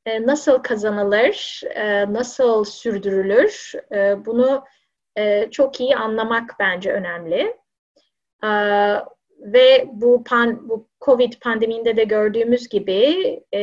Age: 30-49